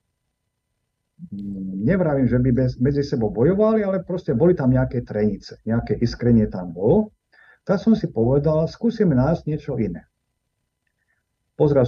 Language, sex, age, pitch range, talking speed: Slovak, male, 50-69, 110-160 Hz, 130 wpm